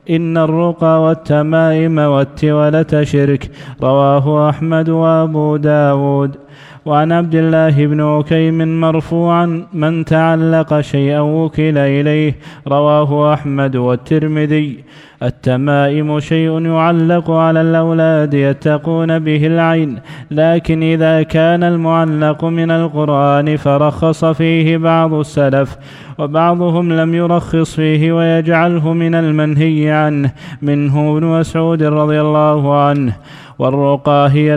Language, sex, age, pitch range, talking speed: Arabic, male, 20-39, 150-165 Hz, 95 wpm